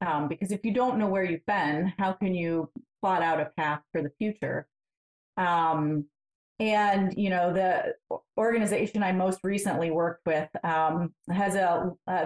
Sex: female